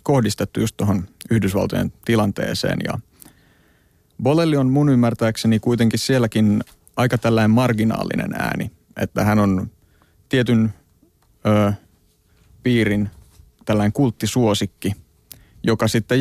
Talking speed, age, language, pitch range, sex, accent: 95 wpm, 30-49, Finnish, 100-115 Hz, male, native